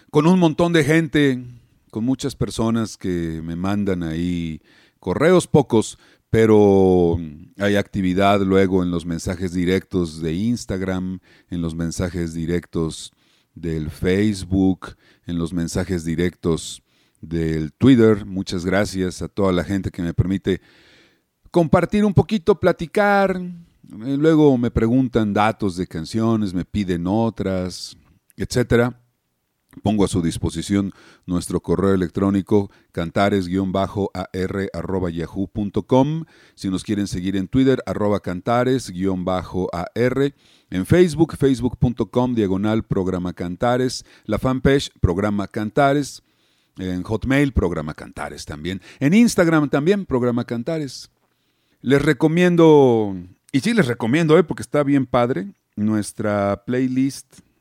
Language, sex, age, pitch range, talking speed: Spanish, male, 40-59, 90-130 Hz, 115 wpm